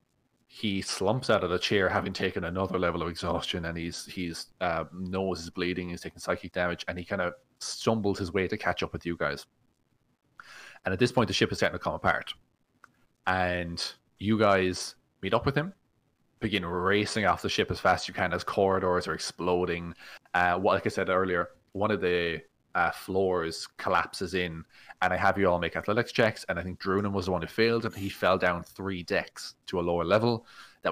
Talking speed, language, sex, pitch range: 210 wpm, English, male, 90-100 Hz